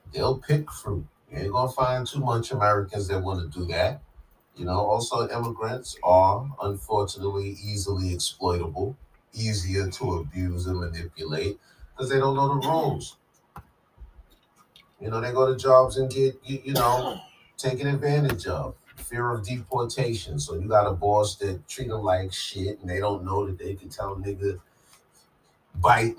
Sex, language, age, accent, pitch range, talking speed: male, English, 30-49, American, 95-125 Hz, 165 wpm